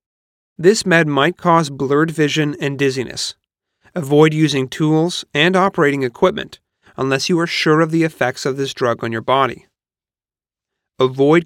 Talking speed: 145 wpm